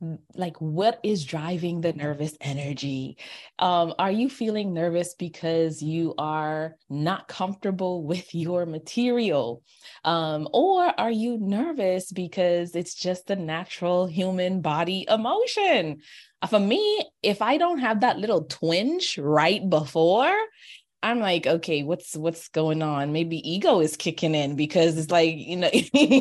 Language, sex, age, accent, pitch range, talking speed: English, female, 20-39, American, 150-190 Hz, 140 wpm